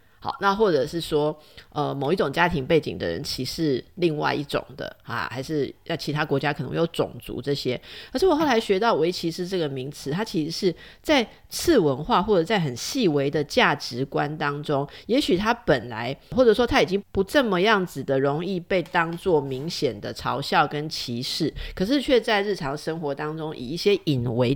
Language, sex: Chinese, female